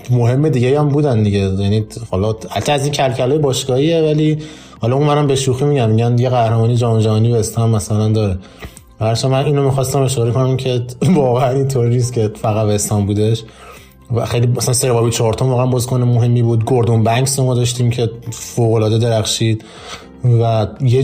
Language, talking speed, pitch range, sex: Persian, 150 wpm, 115-140 Hz, male